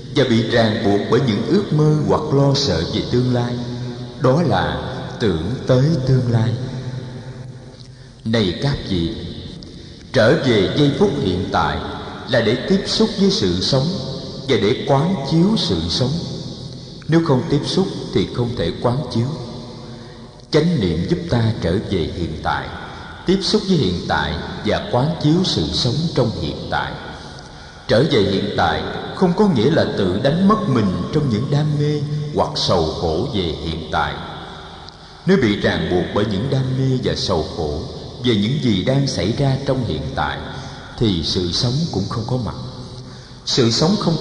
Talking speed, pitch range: 170 wpm, 115-150 Hz